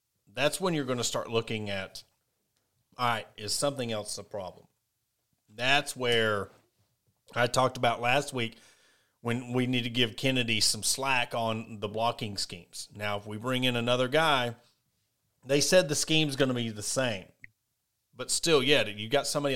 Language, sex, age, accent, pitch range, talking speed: English, male, 40-59, American, 110-130 Hz, 175 wpm